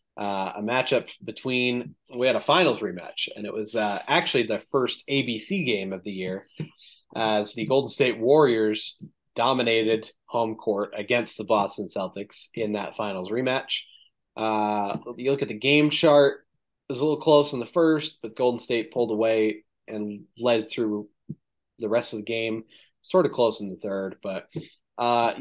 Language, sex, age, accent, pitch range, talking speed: English, male, 20-39, American, 105-125 Hz, 170 wpm